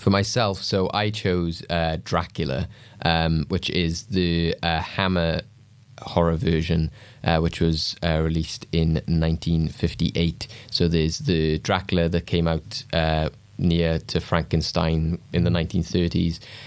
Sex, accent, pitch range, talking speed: male, British, 80-95 Hz, 130 wpm